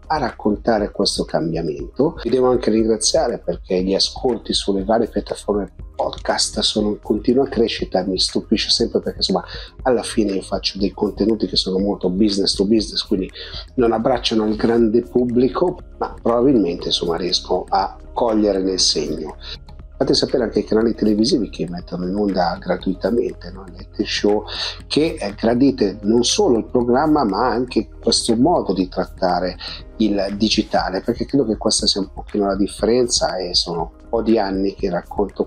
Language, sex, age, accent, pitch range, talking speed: Italian, male, 40-59, native, 95-115 Hz, 160 wpm